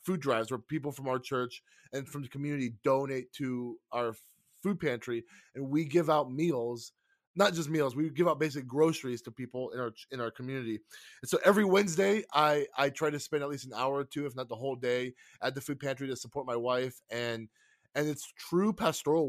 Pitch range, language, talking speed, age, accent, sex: 130-170 Hz, English, 215 wpm, 20-39, American, male